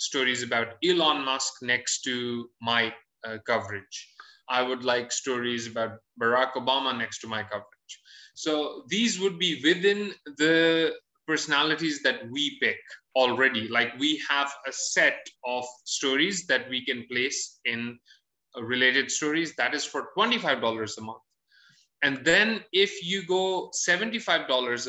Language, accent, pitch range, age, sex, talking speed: English, Indian, 125-195 Hz, 20-39, male, 140 wpm